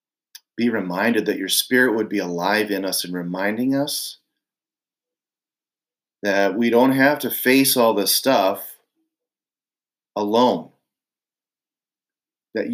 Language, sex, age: English, male, 40-59